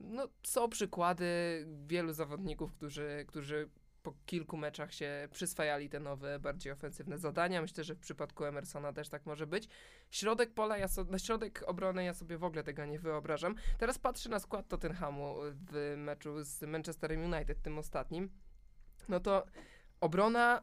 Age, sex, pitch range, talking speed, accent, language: 20-39, male, 155-200 Hz, 160 wpm, native, Polish